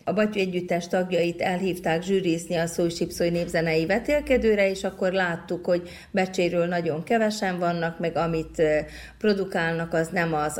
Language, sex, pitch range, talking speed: Hungarian, female, 160-190 Hz, 135 wpm